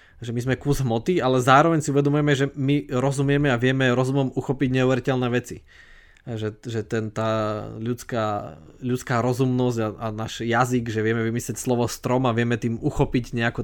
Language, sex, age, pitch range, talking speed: Slovak, male, 20-39, 115-135 Hz, 165 wpm